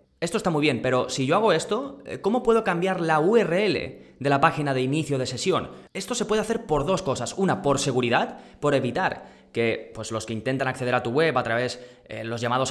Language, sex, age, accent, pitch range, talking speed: Spanish, male, 20-39, Spanish, 115-140 Hz, 215 wpm